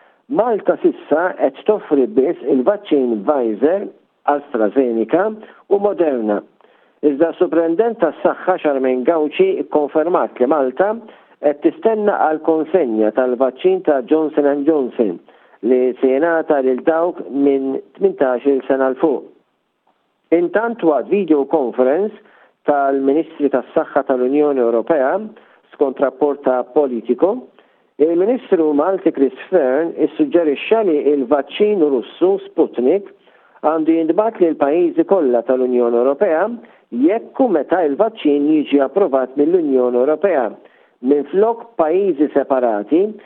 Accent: Italian